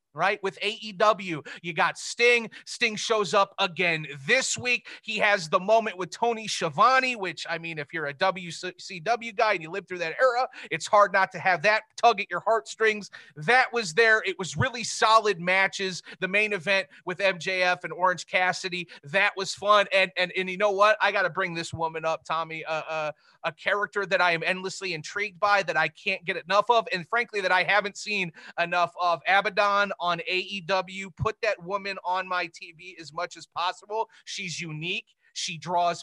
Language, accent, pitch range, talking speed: English, American, 170-215 Hz, 195 wpm